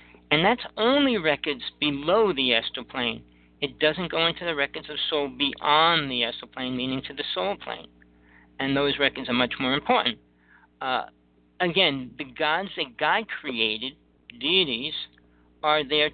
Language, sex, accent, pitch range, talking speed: English, male, American, 115-150 Hz, 155 wpm